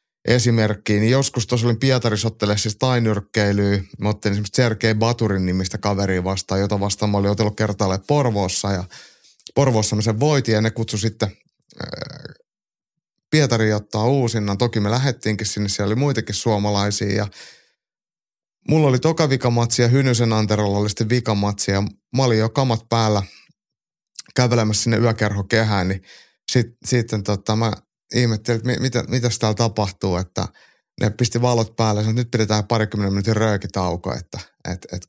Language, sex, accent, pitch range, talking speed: Finnish, male, native, 100-120 Hz, 140 wpm